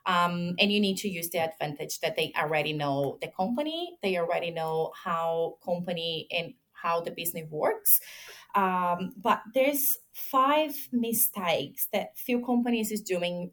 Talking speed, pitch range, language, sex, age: 150 wpm, 170-215 Hz, English, female, 30-49